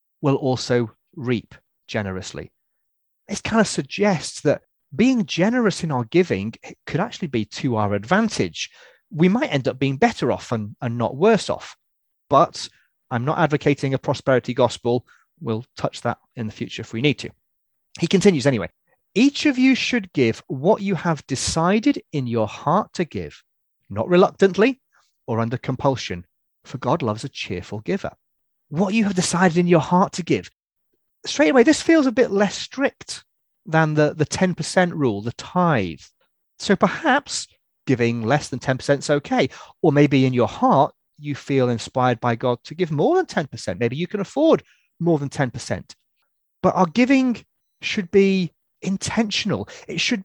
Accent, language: British, English